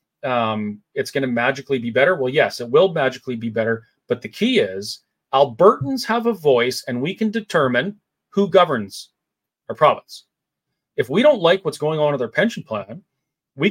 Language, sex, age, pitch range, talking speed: English, male, 30-49, 130-180 Hz, 185 wpm